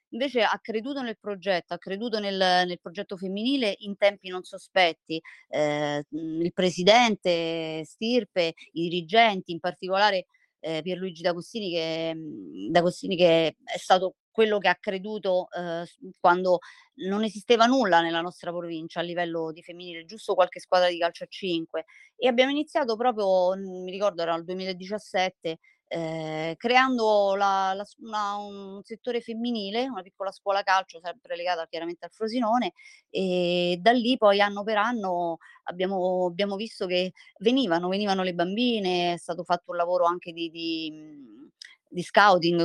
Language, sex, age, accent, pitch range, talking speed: Italian, female, 30-49, native, 175-220 Hz, 140 wpm